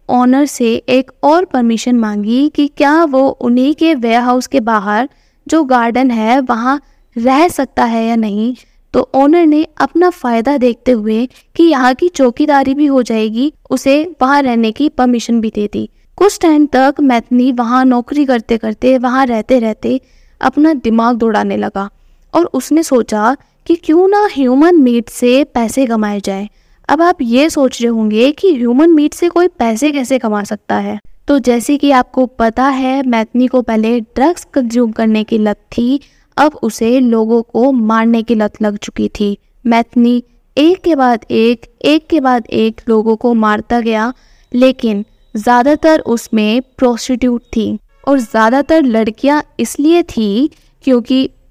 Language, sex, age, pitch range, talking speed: Hindi, female, 10-29, 230-285 Hz, 160 wpm